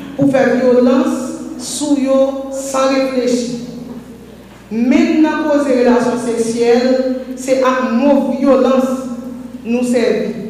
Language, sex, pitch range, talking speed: French, female, 230-265 Hz, 105 wpm